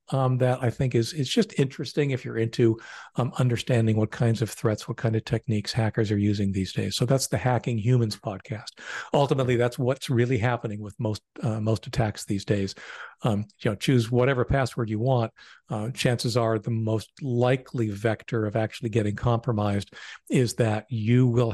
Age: 50-69